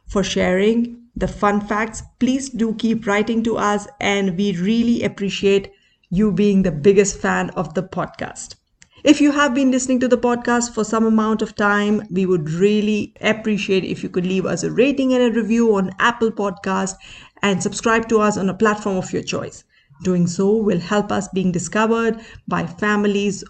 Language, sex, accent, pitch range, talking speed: English, female, Indian, 190-230 Hz, 185 wpm